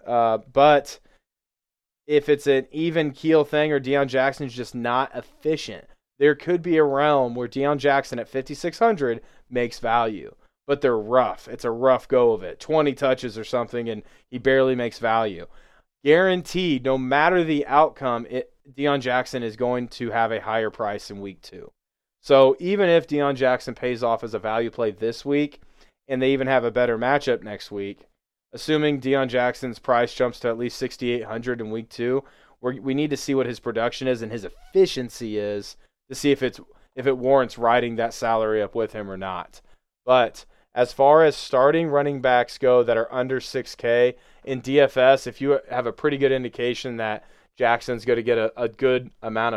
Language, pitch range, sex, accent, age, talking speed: English, 115-140 Hz, male, American, 20-39, 185 wpm